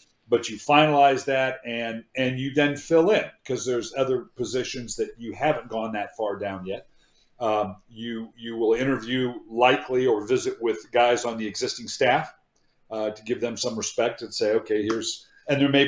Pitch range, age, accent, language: 120-155 Hz, 50-69, American, English